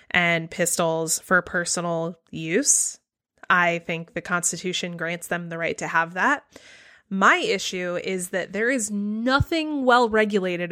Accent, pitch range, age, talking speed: American, 180-235 Hz, 20-39, 135 wpm